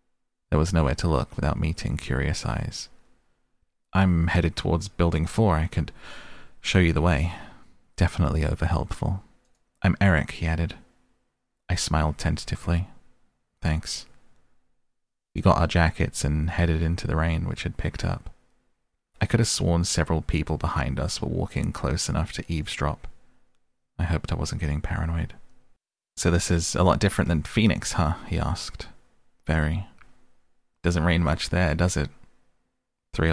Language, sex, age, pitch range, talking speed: English, male, 30-49, 80-100 Hz, 150 wpm